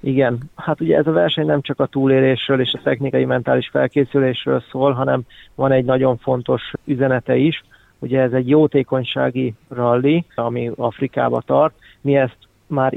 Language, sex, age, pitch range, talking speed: Hungarian, male, 30-49, 120-140 Hz, 155 wpm